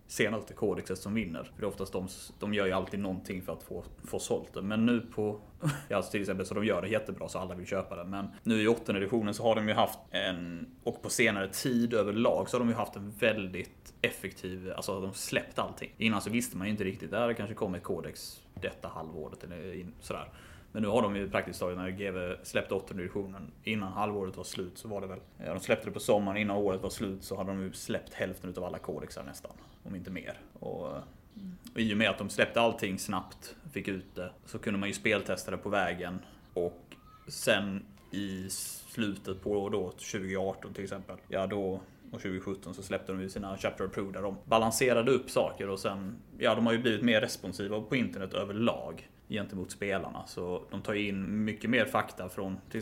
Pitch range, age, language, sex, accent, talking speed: 95-105 Hz, 30-49, Swedish, male, native, 220 wpm